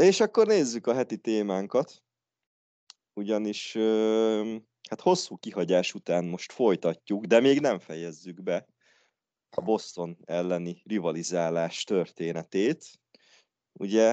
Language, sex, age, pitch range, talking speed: Hungarian, male, 20-39, 85-105 Hz, 100 wpm